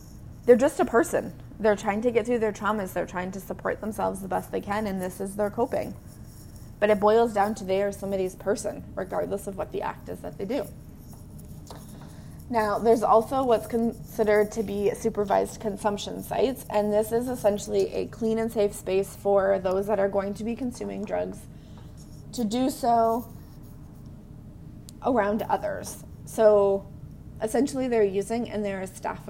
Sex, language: female, English